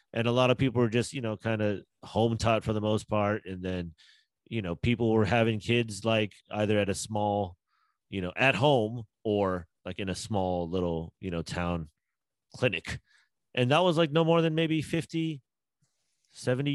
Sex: male